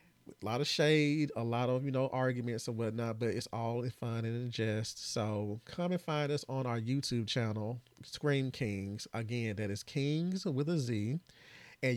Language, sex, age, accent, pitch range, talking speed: English, male, 30-49, American, 120-145 Hz, 190 wpm